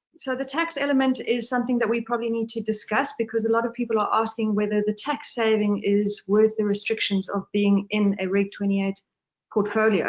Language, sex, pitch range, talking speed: English, female, 205-240 Hz, 200 wpm